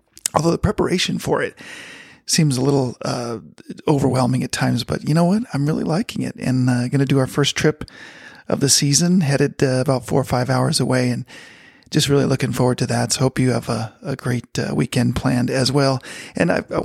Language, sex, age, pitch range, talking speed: English, male, 40-59, 125-145 Hz, 215 wpm